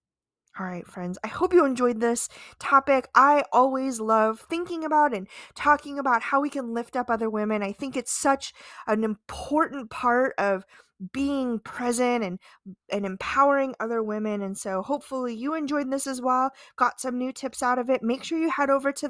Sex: female